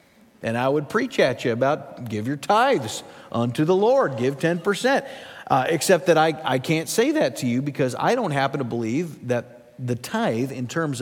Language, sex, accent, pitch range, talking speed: English, male, American, 130-180 Hz, 195 wpm